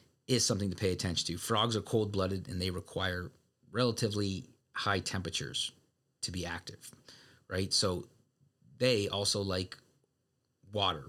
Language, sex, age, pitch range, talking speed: English, male, 30-49, 95-125 Hz, 130 wpm